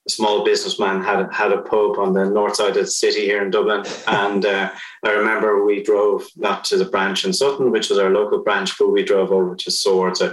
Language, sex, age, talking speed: English, male, 30-49, 240 wpm